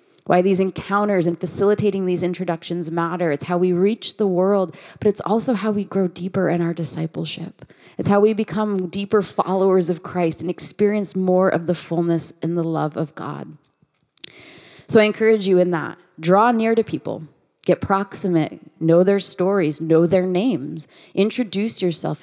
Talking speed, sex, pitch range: 170 wpm, female, 170-205 Hz